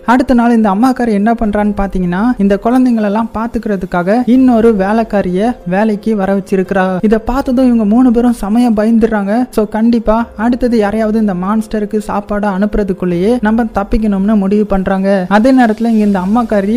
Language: Tamil